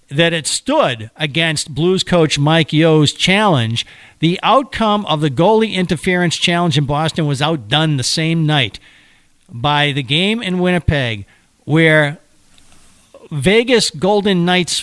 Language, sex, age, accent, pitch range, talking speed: English, male, 50-69, American, 150-190 Hz, 130 wpm